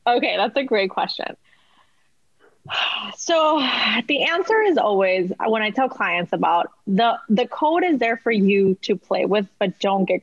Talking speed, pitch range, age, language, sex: 165 wpm, 190-255 Hz, 20-39, English, female